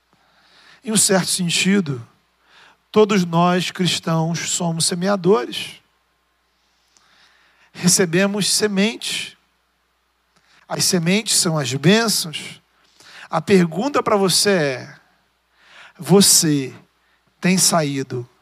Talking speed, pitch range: 80 wpm, 175-225 Hz